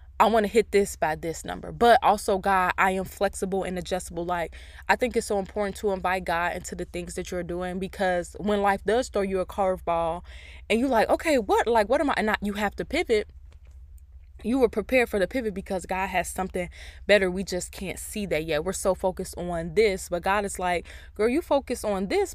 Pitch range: 170-210 Hz